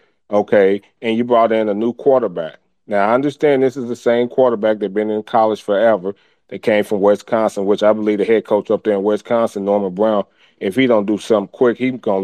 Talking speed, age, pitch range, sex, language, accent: 225 wpm, 40-59, 115-140 Hz, male, English, American